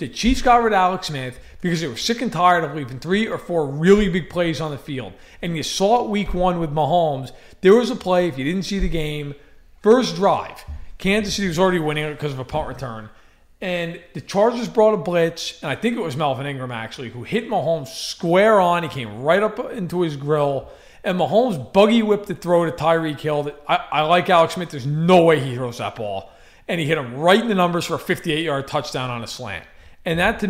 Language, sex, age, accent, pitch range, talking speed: English, male, 40-59, American, 140-185 Hz, 235 wpm